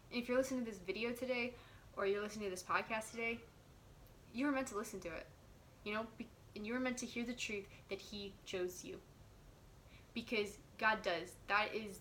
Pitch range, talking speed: 190-235 Hz, 200 wpm